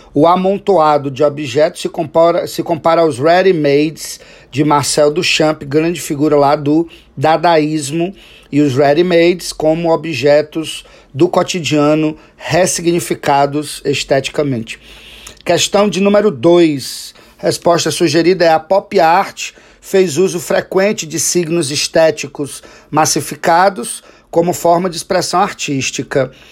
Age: 40-59